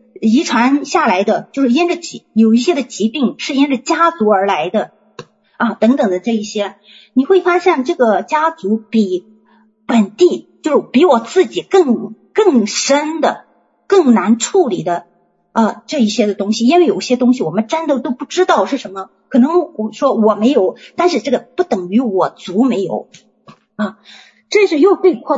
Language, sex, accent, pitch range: Chinese, female, native, 215-285 Hz